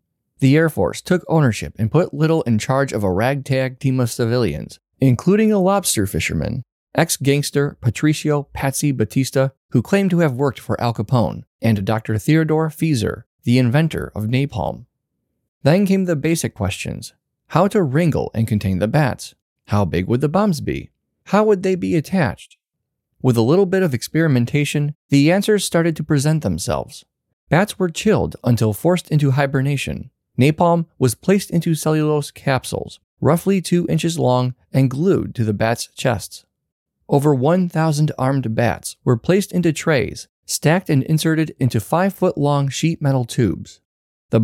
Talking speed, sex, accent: 155 wpm, male, American